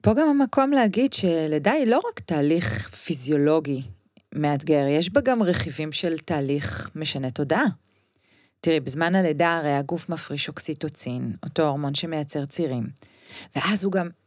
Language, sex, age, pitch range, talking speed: Hebrew, female, 40-59, 150-190 Hz, 140 wpm